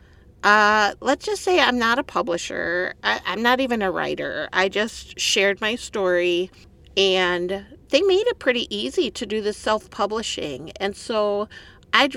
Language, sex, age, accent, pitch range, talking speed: English, female, 50-69, American, 185-245 Hz, 155 wpm